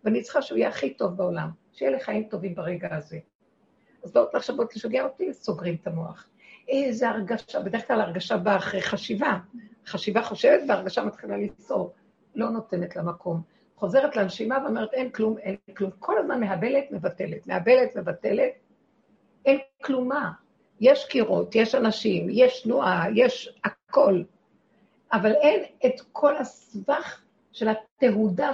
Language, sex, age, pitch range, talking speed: Hebrew, female, 60-79, 195-275 Hz, 135 wpm